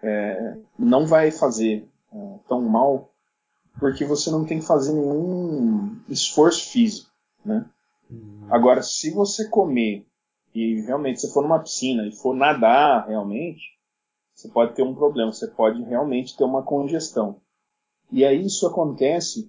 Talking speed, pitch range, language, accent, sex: 135 wpm, 125-190 Hz, Portuguese, Brazilian, male